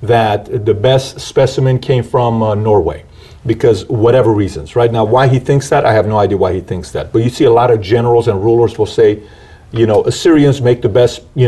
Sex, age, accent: male, 40-59, American